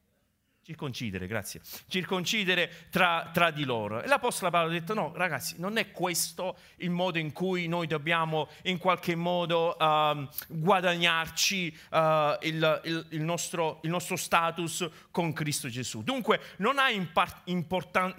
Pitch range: 140-185 Hz